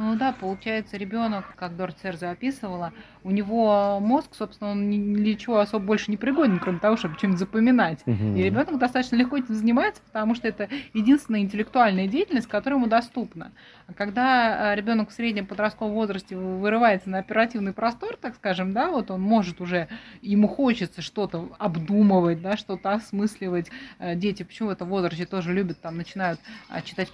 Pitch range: 185-230 Hz